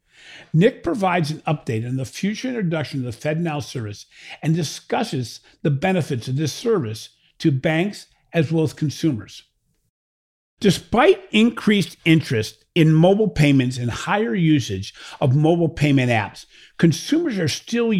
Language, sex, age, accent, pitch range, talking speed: English, male, 50-69, American, 125-170 Hz, 135 wpm